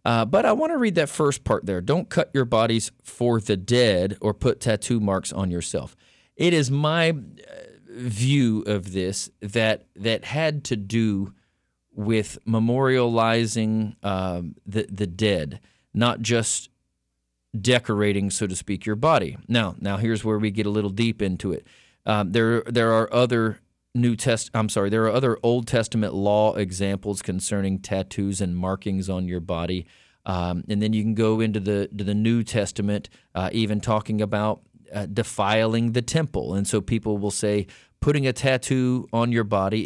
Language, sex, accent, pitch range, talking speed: English, male, American, 100-115 Hz, 170 wpm